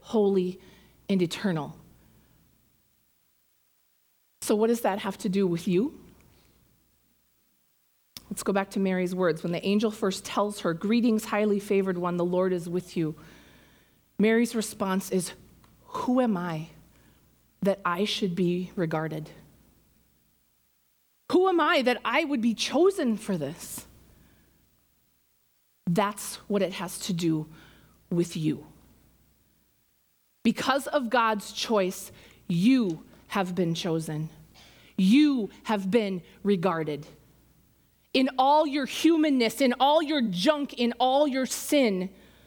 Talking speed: 120 wpm